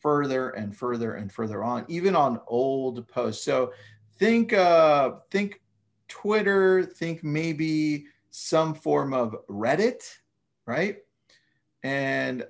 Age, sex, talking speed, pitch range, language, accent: 30-49, male, 110 wpm, 115-165 Hz, English, American